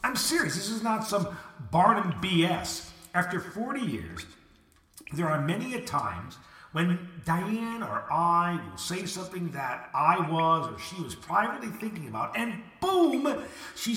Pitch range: 150-225 Hz